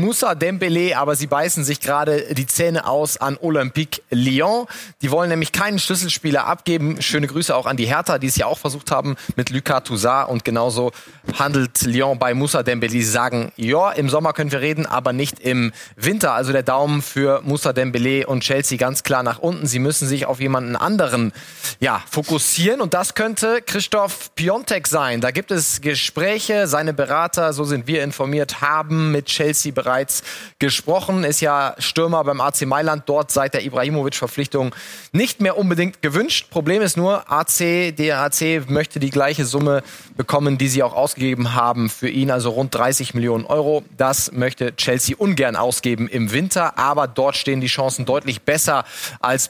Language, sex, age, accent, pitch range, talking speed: German, male, 30-49, German, 130-165 Hz, 175 wpm